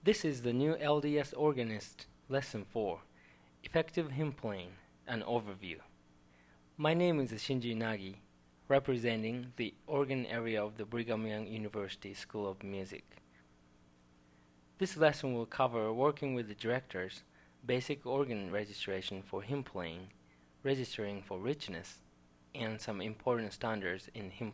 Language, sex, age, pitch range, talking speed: English, male, 20-39, 80-130 Hz, 130 wpm